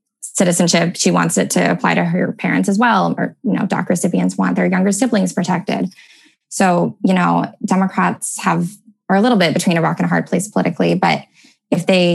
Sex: female